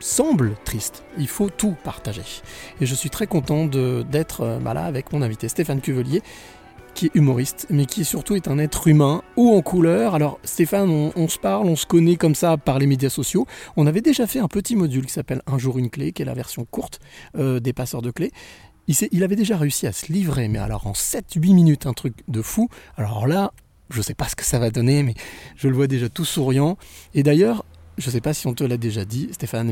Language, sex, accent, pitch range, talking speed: French, male, French, 125-165 Hz, 240 wpm